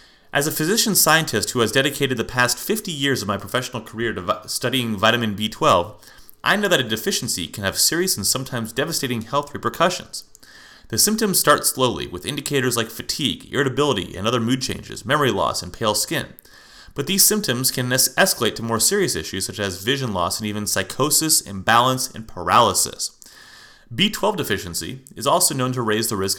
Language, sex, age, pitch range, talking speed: English, male, 30-49, 100-135 Hz, 175 wpm